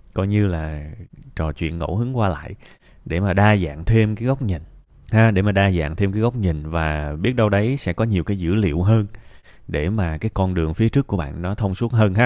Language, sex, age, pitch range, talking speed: Vietnamese, male, 20-39, 85-115 Hz, 250 wpm